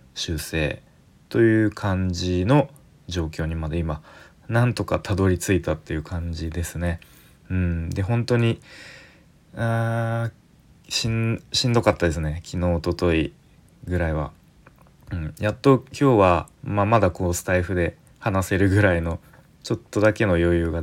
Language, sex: Japanese, male